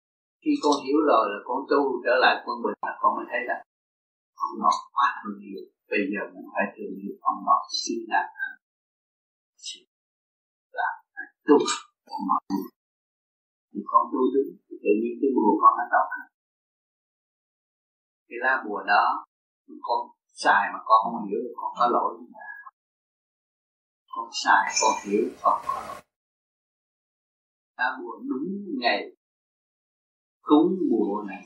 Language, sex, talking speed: Vietnamese, male, 130 wpm